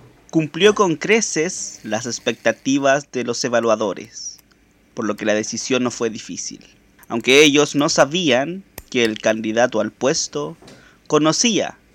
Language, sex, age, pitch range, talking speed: Spanish, male, 30-49, 115-150 Hz, 130 wpm